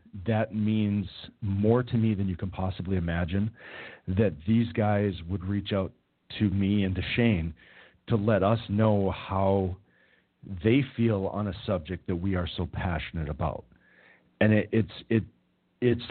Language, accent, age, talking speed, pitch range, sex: English, American, 40-59, 155 wpm, 90-105 Hz, male